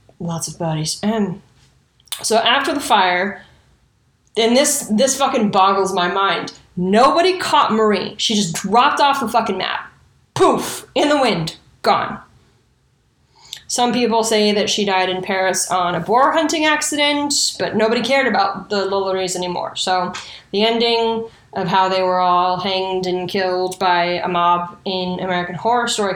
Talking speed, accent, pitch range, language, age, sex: 155 wpm, American, 185-230 Hz, English, 20-39, female